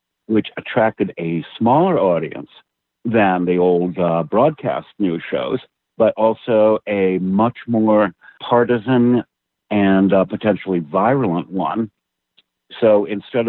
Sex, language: male, English